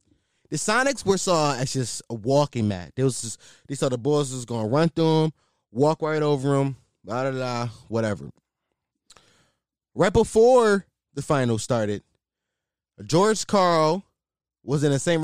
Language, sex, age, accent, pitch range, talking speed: English, male, 20-39, American, 120-175 Hz, 160 wpm